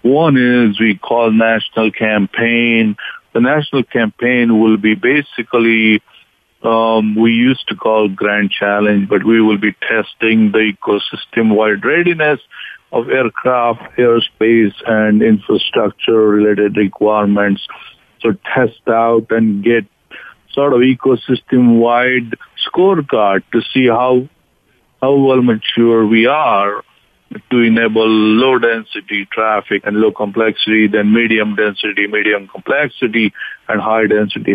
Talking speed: 115 wpm